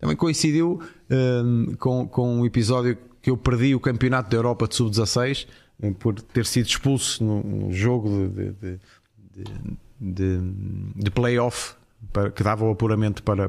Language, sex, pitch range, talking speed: Portuguese, male, 105-125 Hz, 130 wpm